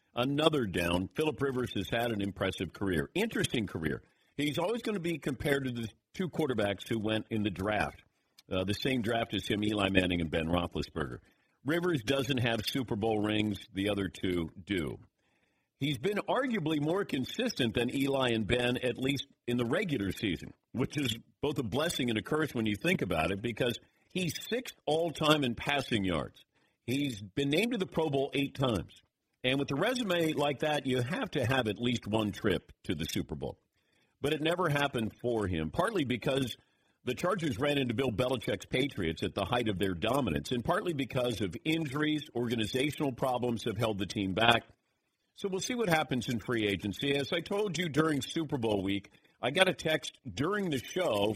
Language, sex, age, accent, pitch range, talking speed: English, male, 50-69, American, 105-150 Hz, 195 wpm